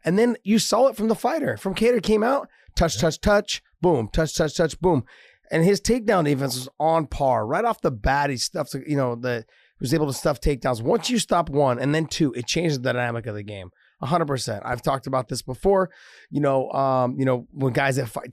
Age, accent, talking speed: 30-49, American, 240 wpm